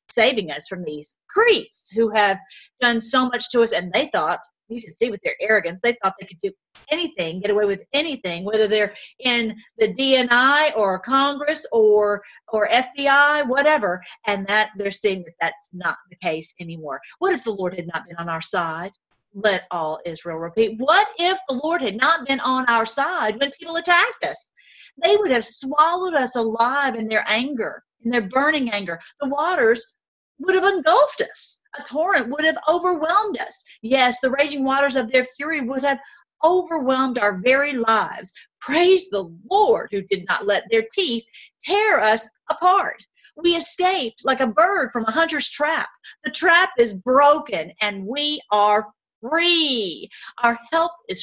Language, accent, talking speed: English, American, 175 wpm